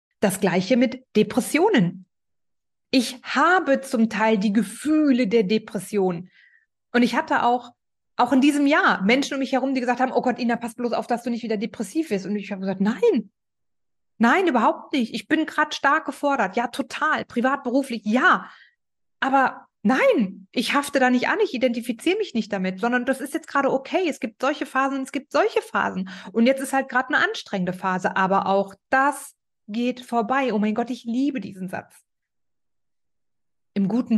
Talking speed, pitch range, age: 185 wpm, 200-265 Hz, 30-49